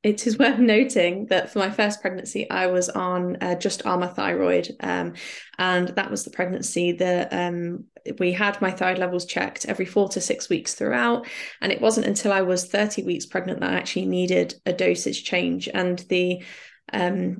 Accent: British